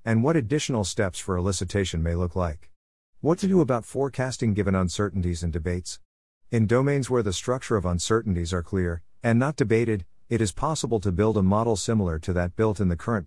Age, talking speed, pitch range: 50-69, 200 wpm, 90-115 Hz